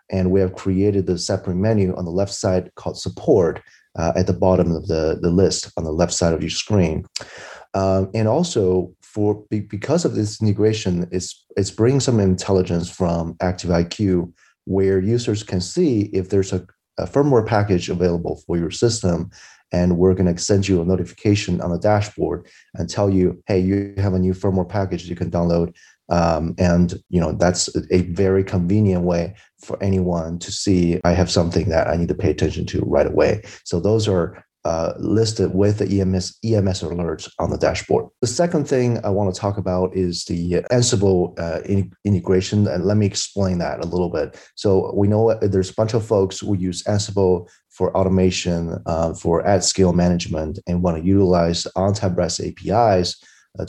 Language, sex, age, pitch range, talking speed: English, male, 30-49, 90-100 Hz, 185 wpm